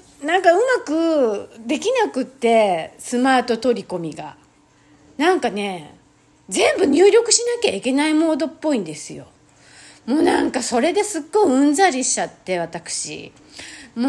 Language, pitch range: Japanese, 205-305 Hz